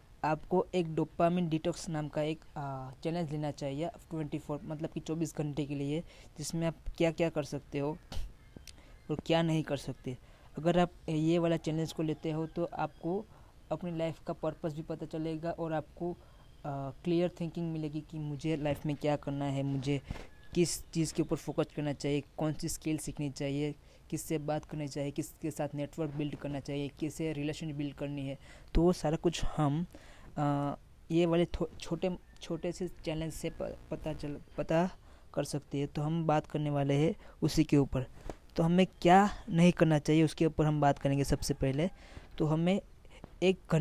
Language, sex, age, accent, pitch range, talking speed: Hindi, female, 20-39, native, 145-165 Hz, 180 wpm